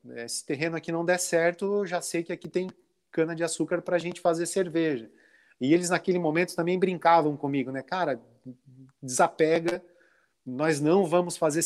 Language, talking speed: Portuguese, 160 wpm